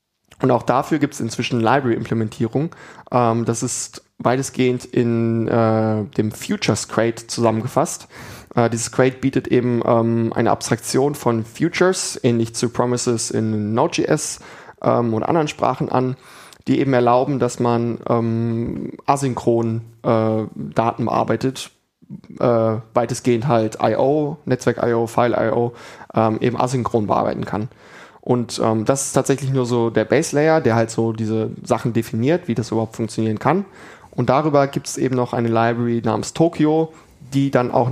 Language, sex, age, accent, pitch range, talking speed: German, male, 20-39, German, 115-130 Hz, 140 wpm